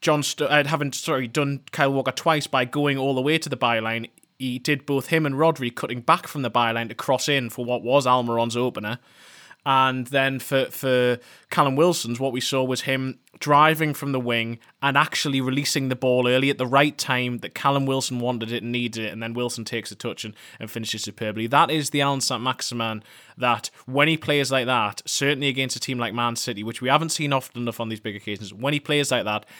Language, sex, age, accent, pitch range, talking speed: English, male, 20-39, British, 120-140 Hz, 230 wpm